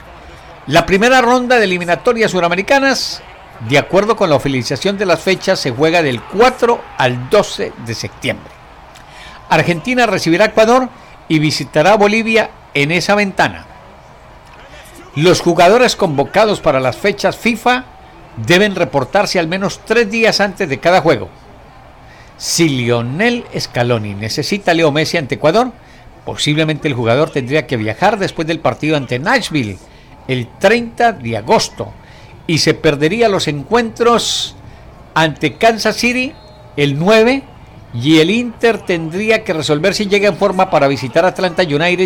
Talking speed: 140 wpm